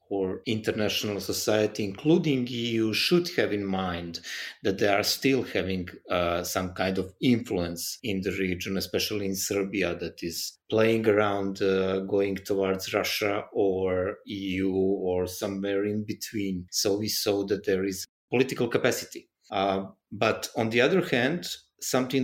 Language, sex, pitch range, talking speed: English, male, 95-115 Hz, 145 wpm